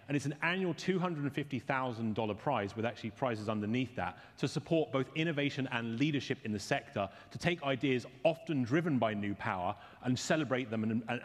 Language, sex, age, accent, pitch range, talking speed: English, male, 30-49, British, 115-160 Hz, 170 wpm